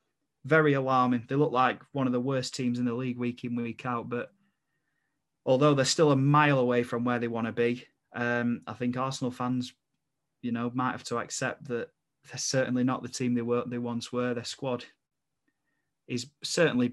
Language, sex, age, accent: English, male, 20-39, British